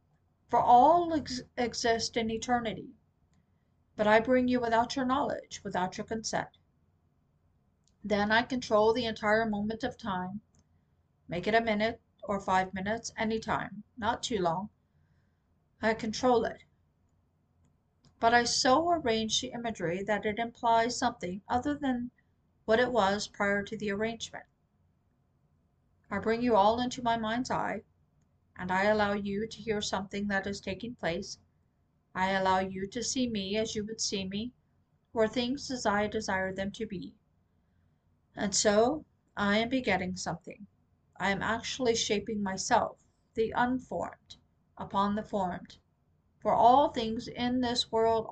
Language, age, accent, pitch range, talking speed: English, 50-69, American, 190-235 Hz, 145 wpm